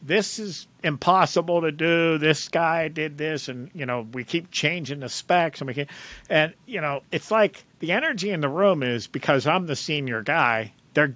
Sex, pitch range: male, 130-165 Hz